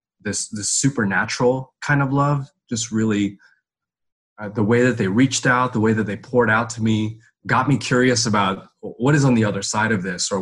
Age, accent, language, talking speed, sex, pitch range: 20-39, American, English, 205 wpm, male, 100-125 Hz